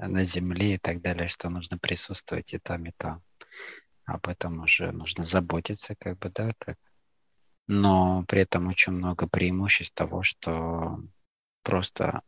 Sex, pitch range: male, 85-95 Hz